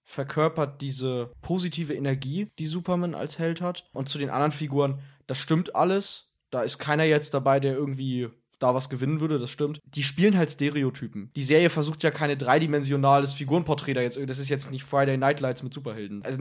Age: 20-39